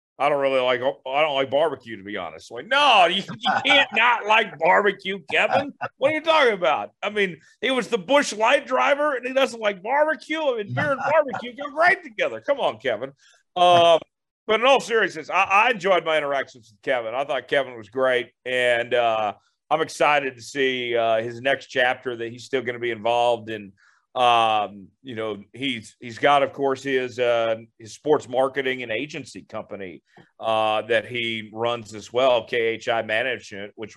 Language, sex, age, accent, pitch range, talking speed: English, male, 40-59, American, 115-150 Hz, 195 wpm